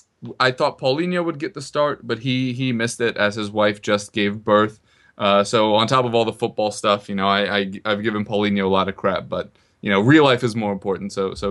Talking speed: 250 wpm